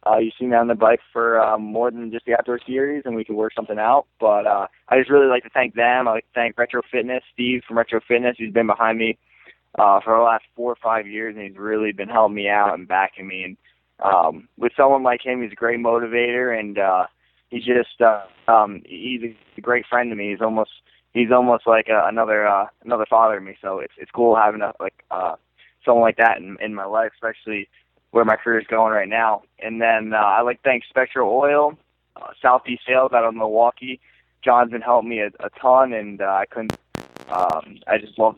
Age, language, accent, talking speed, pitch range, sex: 20-39, English, American, 235 wpm, 110-120 Hz, male